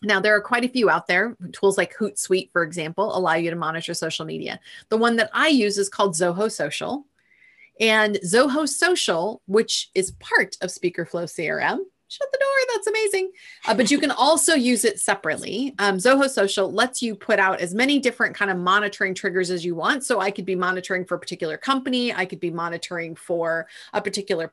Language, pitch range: English, 190-250 Hz